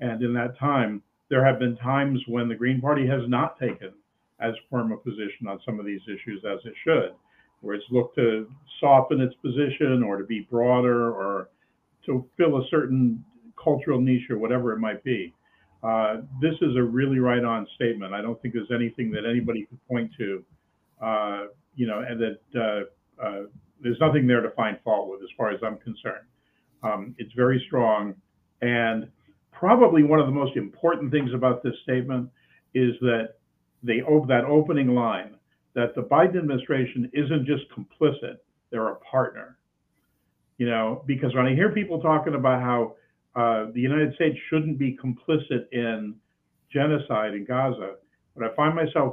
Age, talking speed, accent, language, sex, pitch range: 50-69, 175 wpm, American, English, male, 115-140 Hz